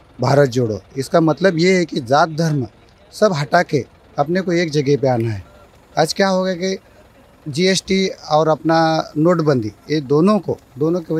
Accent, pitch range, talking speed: native, 140-180 Hz, 180 wpm